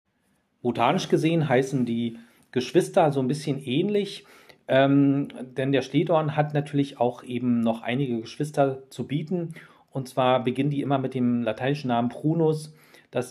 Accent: German